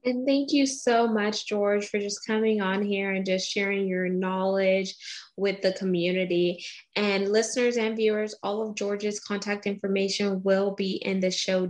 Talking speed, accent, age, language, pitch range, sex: 170 wpm, American, 10-29, English, 190-220 Hz, female